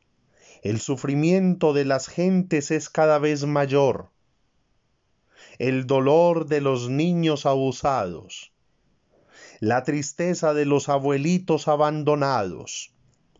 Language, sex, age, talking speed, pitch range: Spanish, male, 40-59, 95 wpm, 125-155 Hz